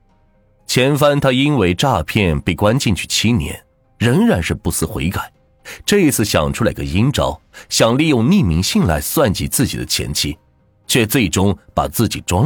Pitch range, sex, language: 85-115 Hz, male, Chinese